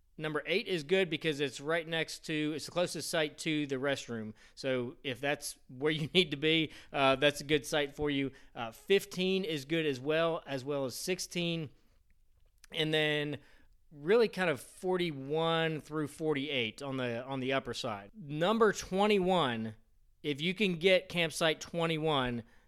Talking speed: 165 wpm